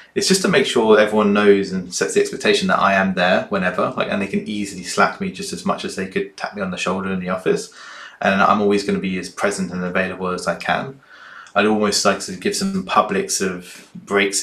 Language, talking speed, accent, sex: English, 250 wpm, British, male